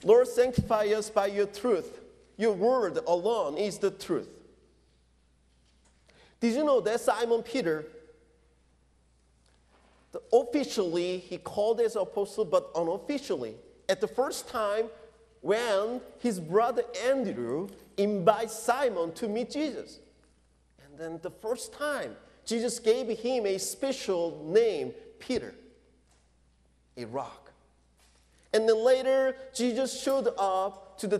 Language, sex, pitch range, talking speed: English, male, 150-235 Hz, 115 wpm